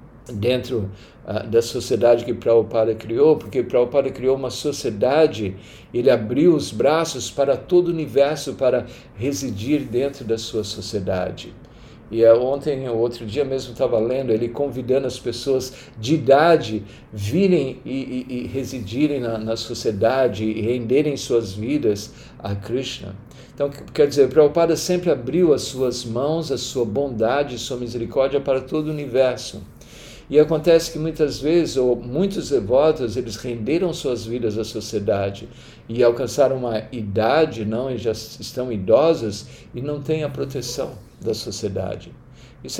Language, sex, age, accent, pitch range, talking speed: Portuguese, male, 50-69, Brazilian, 115-145 Hz, 145 wpm